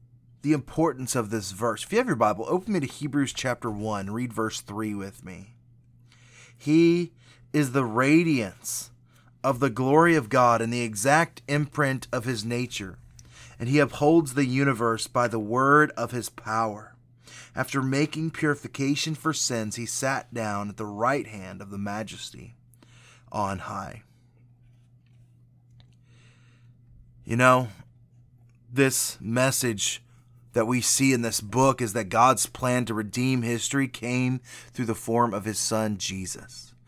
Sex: male